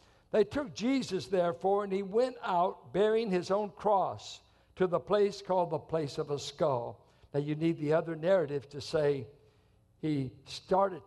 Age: 60-79